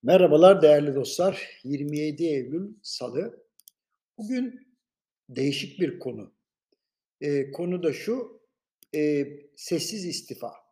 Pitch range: 150-190 Hz